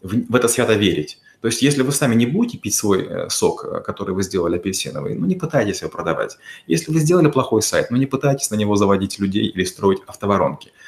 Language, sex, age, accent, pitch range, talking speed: Russian, male, 30-49, native, 105-130 Hz, 210 wpm